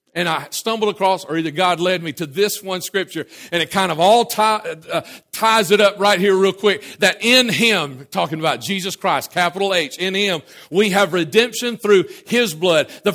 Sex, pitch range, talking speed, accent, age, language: male, 180-230 Hz, 200 wpm, American, 50-69, English